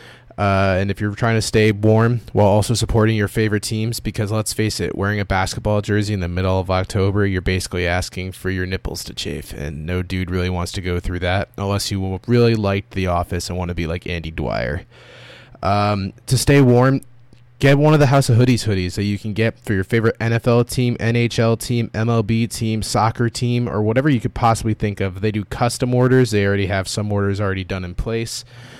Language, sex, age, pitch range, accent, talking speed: English, male, 20-39, 95-120 Hz, American, 215 wpm